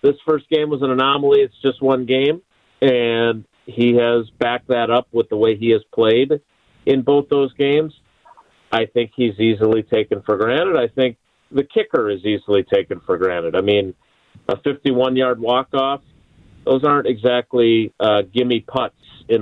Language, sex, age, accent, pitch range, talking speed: English, male, 40-59, American, 115-140 Hz, 165 wpm